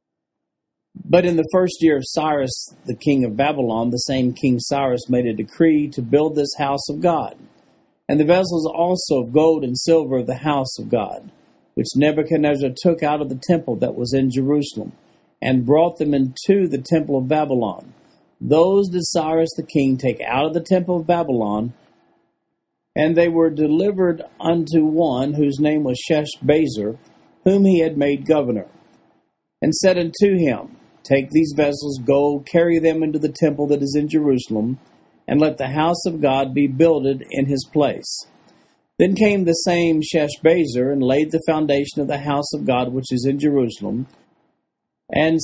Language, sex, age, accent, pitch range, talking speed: English, male, 50-69, American, 135-165 Hz, 170 wpm